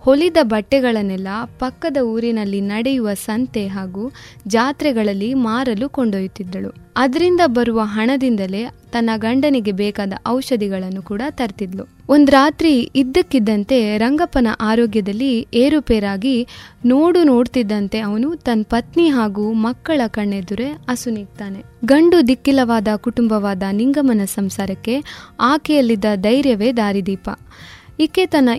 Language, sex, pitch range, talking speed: Kannada, female, 215-270 Hz, 90 wpm